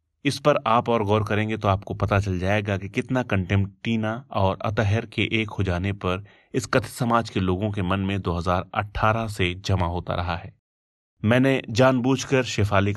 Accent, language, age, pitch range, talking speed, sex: native, Hindi, 30-49, 95-110 Hz, 185 wpm, male